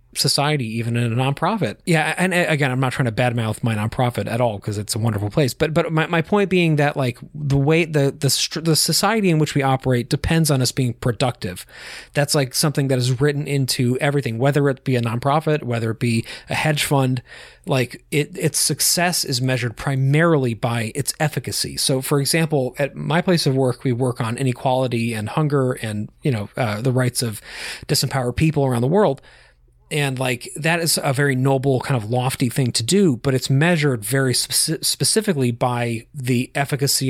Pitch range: 120-150 Hz